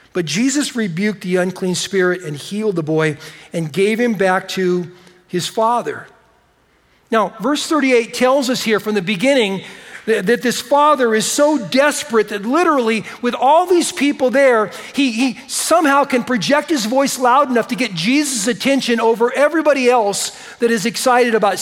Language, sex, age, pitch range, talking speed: English, male, 50-69, 190-250 Hz, 165 wpm